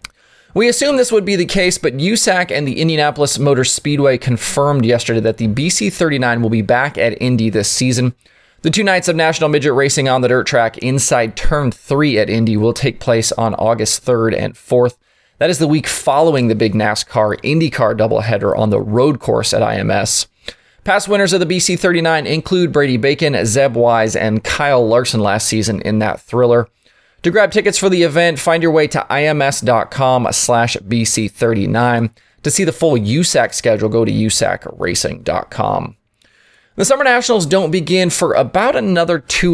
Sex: male